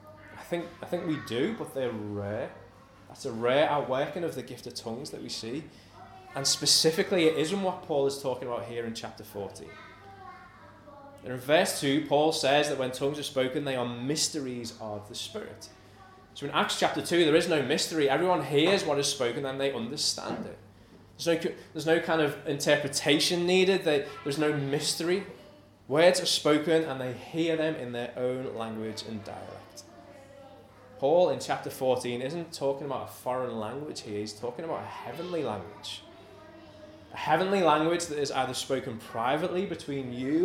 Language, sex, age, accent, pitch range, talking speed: English, male, 20-39, British, 120-150 Hz, 180 wpm